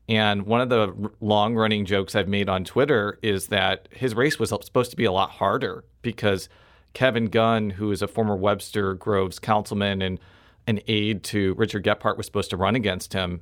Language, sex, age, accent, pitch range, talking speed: English, male, 40-59, American, 100-115 Hz, 190 wpm